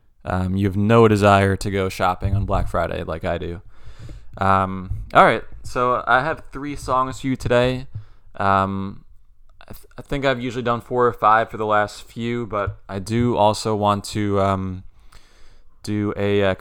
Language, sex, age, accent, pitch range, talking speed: English, male, 20-39, American, 95-120 Hz, 175 wpm